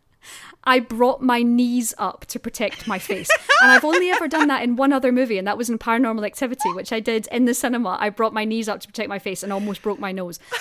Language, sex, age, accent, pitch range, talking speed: English, female, 30-49, British, 220-275 Hz, 255 wpm